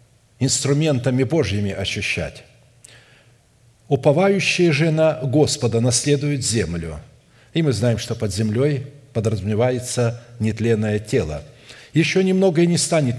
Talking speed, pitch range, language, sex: 105 wpm, 115-145 Hz, Russian, male